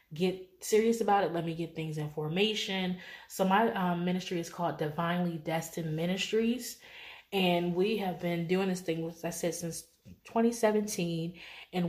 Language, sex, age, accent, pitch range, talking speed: English, female, 20-39, American, 165-195 Hz, 155 wpm